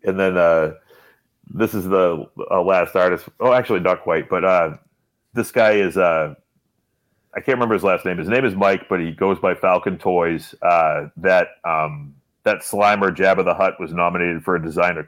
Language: English